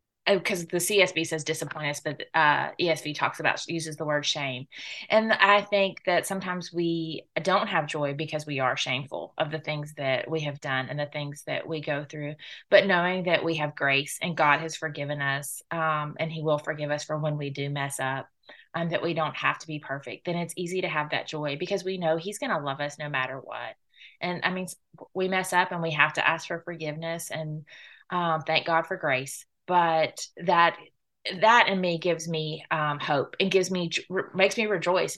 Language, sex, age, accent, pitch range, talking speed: English, female, 20-39, American, 150-180 Hz, 215 wpm